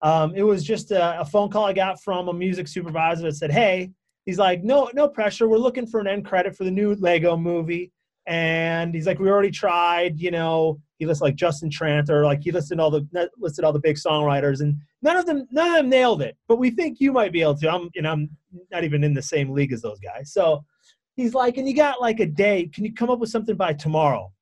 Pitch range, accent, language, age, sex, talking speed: 155-205 Hz, American, English, 30-49, male, 255 wpm